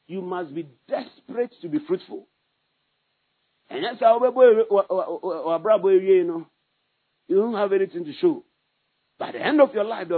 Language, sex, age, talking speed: English, male, 50-69, 140 wpm